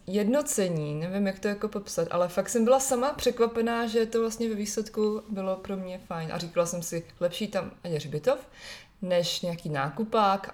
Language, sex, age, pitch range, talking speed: Czech, female, 20-39, 165-200 Hz, 180 wpm